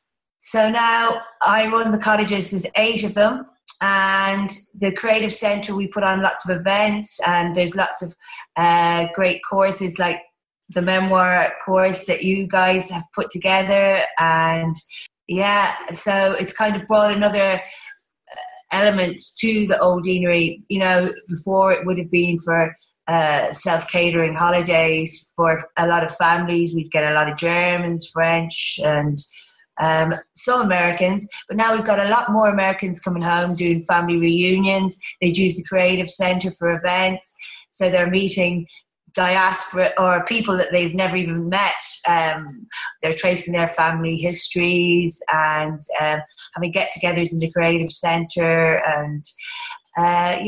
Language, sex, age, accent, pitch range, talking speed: English, female, 30-49, British, 170-195 Hz, 145 wpm